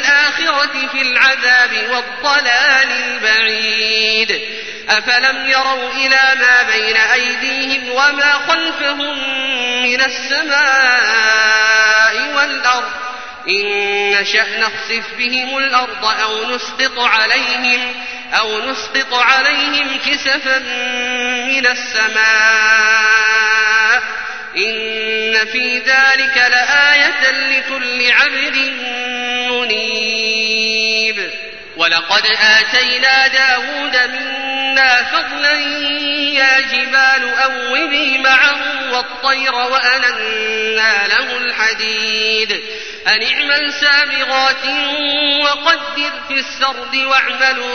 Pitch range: 220-270 Hz